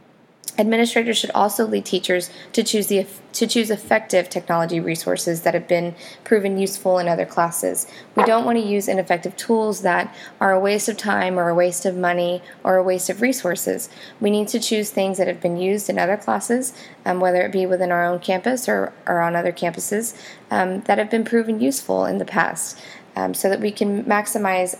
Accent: American